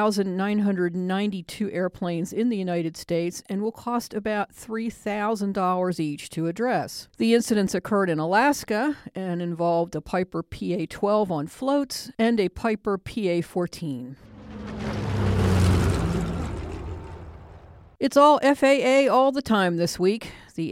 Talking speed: 115 wpm